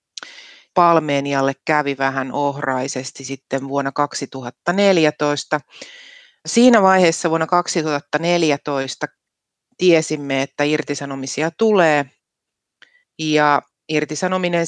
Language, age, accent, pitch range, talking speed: Finnish, 30-49, native, 140-170 Hz, 70 wpm